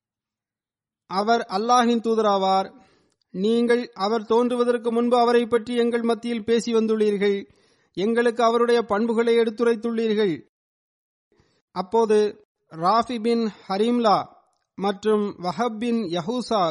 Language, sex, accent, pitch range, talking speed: Tamil, male, native, 205-235 Hz, 90 wpm